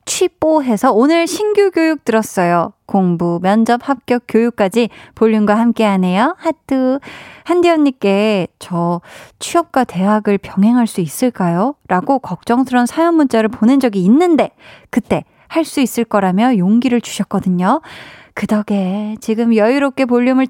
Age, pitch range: 20-39, 215-310 Hz